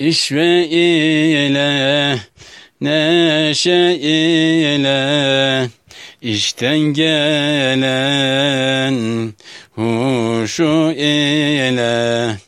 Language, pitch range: Turkish, 130-155 Hz